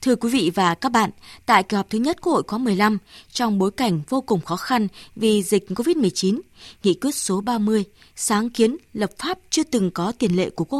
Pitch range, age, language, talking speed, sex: 190-250 Hz, 20-39, Vietnamese, 220 wpm, female